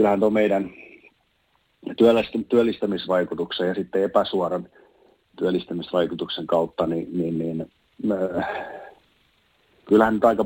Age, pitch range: 40-59, 90-105 Hz